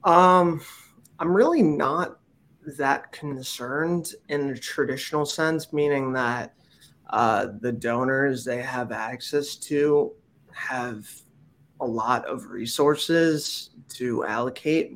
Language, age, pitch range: English, 20-39, 120-150 Hz